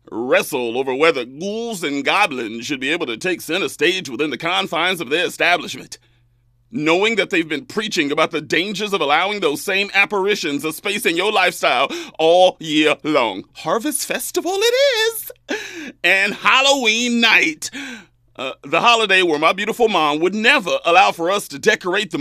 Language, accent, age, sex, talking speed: English, American, 40-59, male, 170 wpm